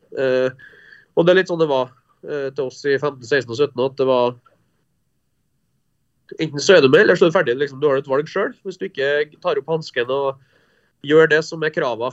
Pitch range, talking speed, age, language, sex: 135-180 Hz, 230 wpm, 20-39, English, male